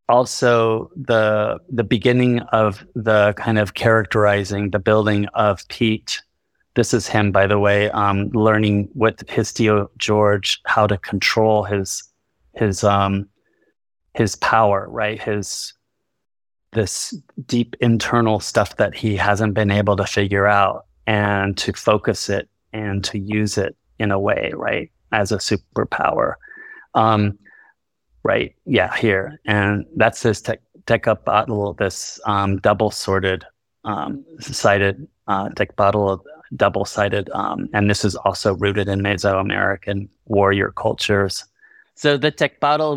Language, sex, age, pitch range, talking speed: English, male, 30-49, 100-115 Hz, 135 wpm